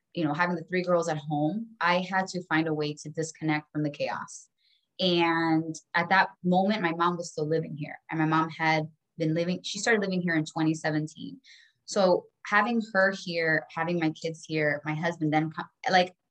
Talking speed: 195 wpm